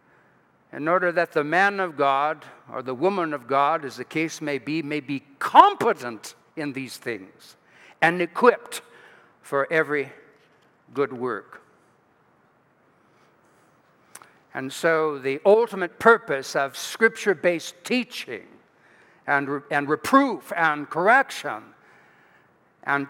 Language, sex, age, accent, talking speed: English, male, 60-79, American, 115 wpm